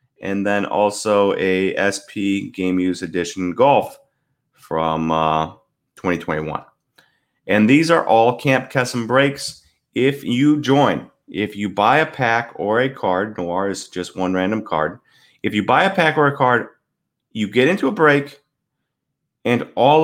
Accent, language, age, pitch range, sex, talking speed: American, English, 30-49, 105-145 Hz, male, 155 wpm